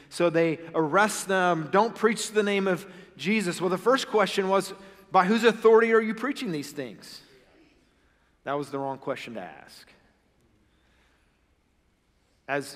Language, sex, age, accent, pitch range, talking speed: English, male, 40-59, American, 130-175 Hz, 145 wpm